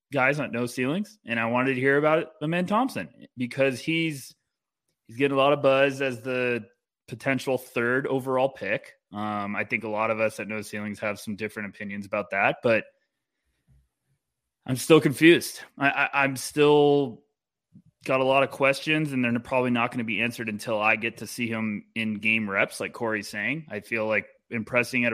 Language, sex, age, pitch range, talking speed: English, male, 20-39, 110-140 Hz, 195 wpm